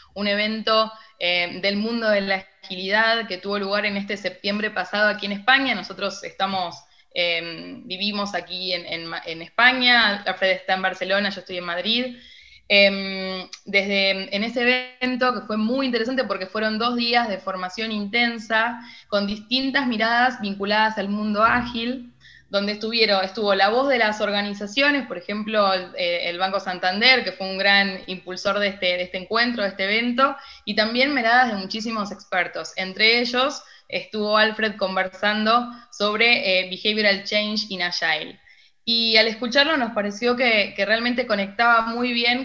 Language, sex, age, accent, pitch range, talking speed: Spanish, female, 20-39, Argentinian, 190-235 Hz, 160 wpm